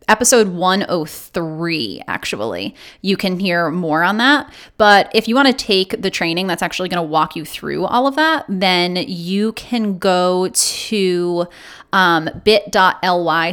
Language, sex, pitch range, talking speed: English, female, 180-240 Hz, 145 wpm